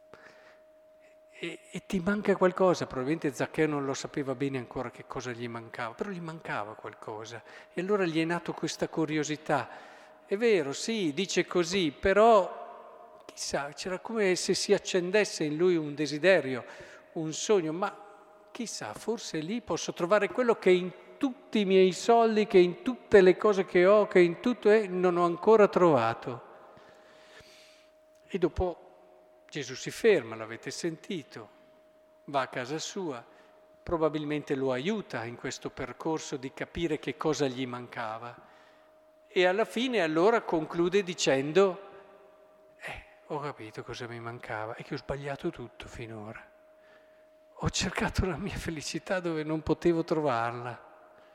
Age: 50-69